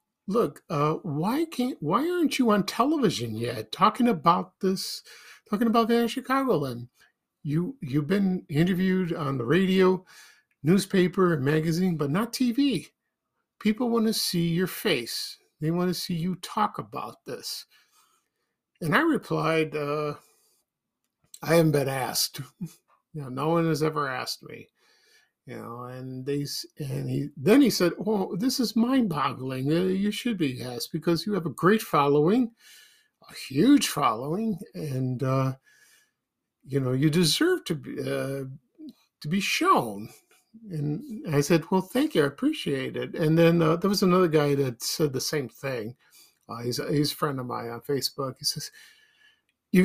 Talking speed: 155 wpm